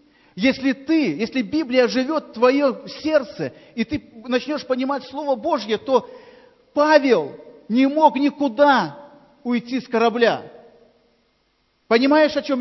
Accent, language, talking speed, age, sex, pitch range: native, Russian, 120 wpm, 40-59, male, 185-270 Hz